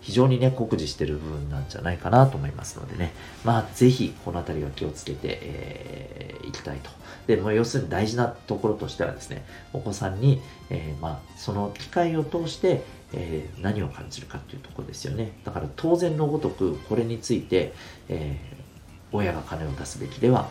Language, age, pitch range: Japanese, 40-59, 85-130 Hz